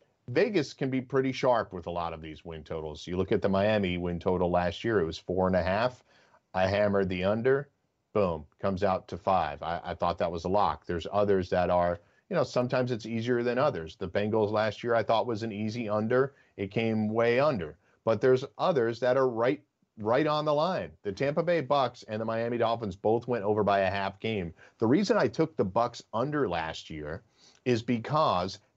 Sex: male